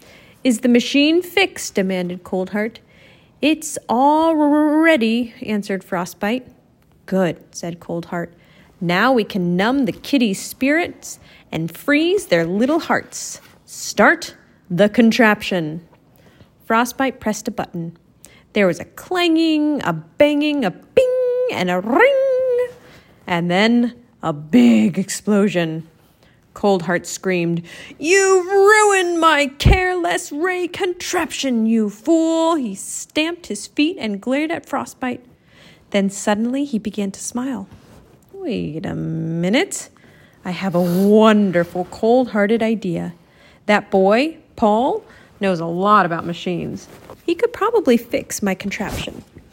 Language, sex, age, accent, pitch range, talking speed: English, female, 30-49, American, 185-300 Hz, 115 wpm